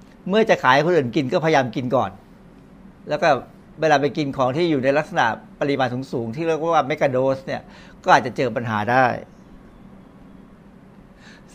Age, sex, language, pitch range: 60-79, male, Thai, 135-170 Hz